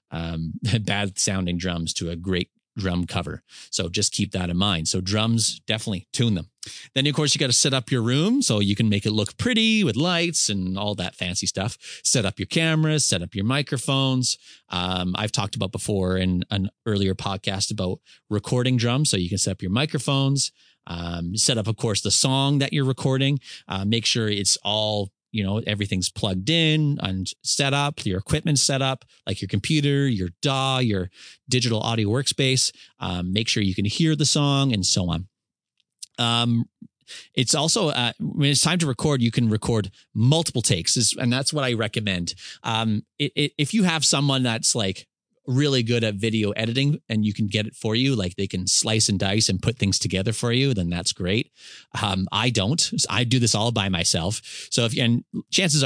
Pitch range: 95-130 Hz